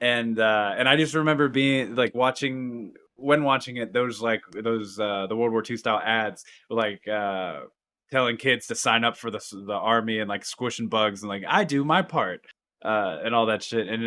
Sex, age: male, 20-39